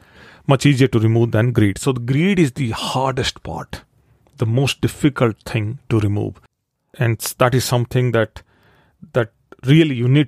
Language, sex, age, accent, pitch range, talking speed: English, male, 40-59, Indian, 110-135 Hz, 165 wpm